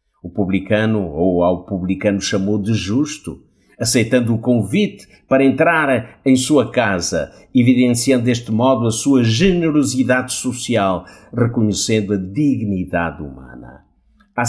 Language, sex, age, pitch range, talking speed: Portuguese, male, 50-69, 100-130 Hz, 115 wpm